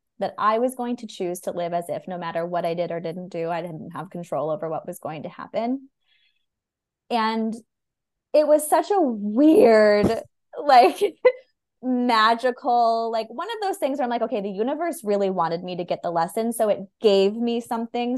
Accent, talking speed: American, 195 wpm